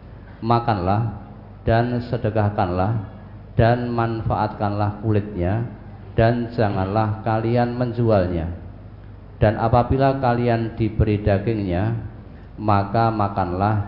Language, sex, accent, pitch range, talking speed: Indonesian, male, native, 100-115 Hz, 75 wpm